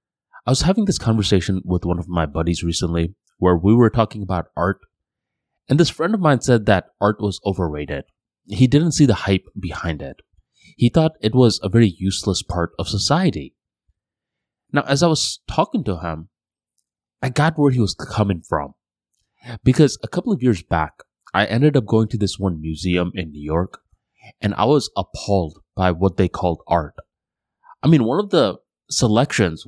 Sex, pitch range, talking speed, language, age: male, 90-120 Hz, 180 wpm, English, 20-39